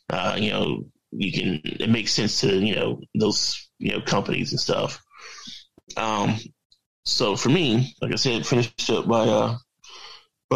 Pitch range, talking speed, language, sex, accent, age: 110-125 Hz, 165 wpm, English, male, American, 20-39